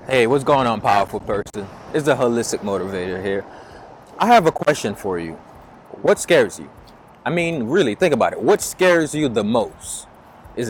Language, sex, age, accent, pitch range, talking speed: English, male, 20-39, American, 105-155 Hz, 180 wpm